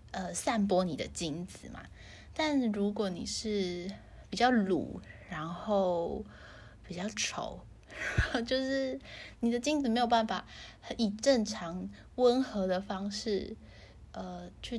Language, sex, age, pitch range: Chinese, female, 20-39, 185-235 Hz